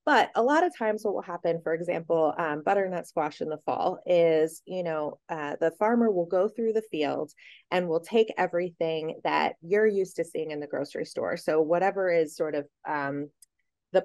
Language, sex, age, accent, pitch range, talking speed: English, female, 20-39, American, 165-210 Hz, 200 wpm